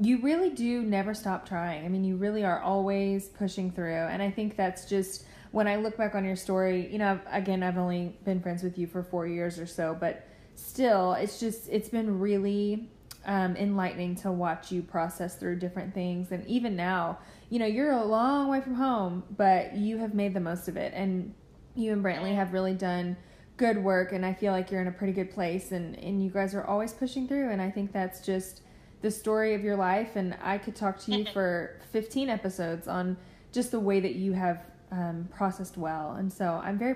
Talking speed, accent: 220 wpm, American